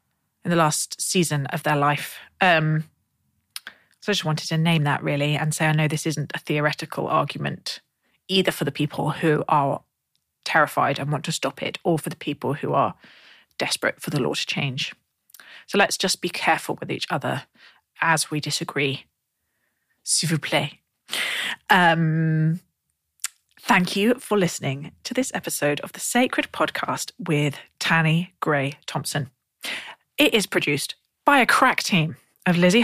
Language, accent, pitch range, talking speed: English, British, 150-200 Hz, 160 wpm